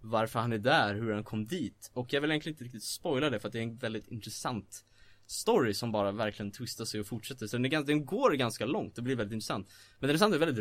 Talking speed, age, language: 265 wpm, 20-39, Swedish